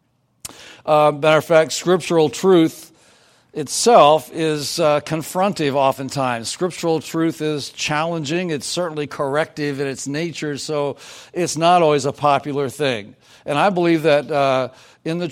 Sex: male